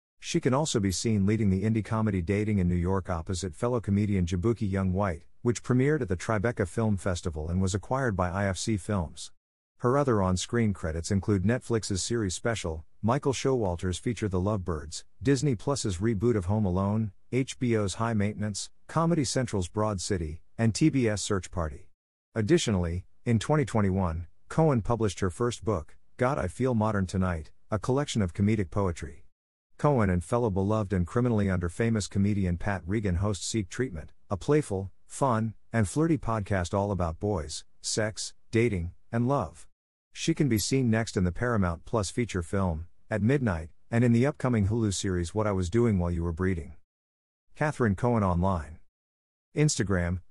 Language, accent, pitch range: English, American, 90-115 Hz